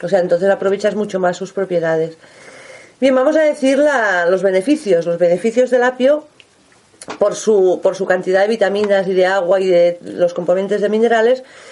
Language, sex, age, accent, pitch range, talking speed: Spanish, female, 40-59, Spanish, 190-260 Hz, 180 wpm